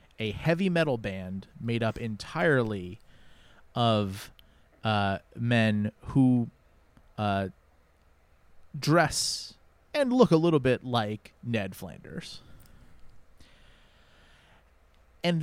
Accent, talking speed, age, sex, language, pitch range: American, 85 wpm, 30-49, male, English, 95-120 Hz